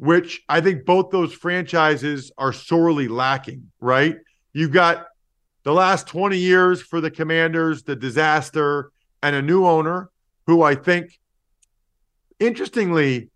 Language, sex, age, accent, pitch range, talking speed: English, male, 40-59, American, 145-180 Hz, 130 wpm